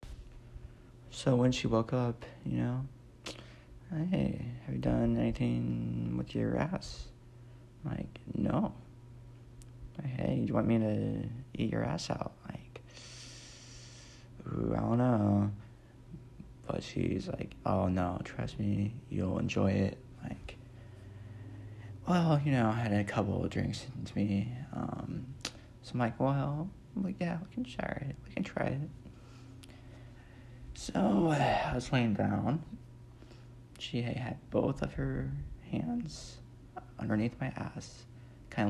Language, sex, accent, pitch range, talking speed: English, male, American, 100-125 Hz, 135 wpm